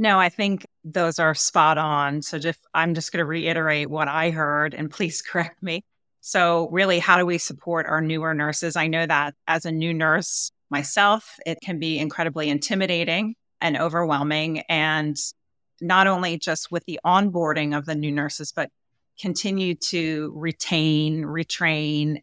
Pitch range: 150-175 Hz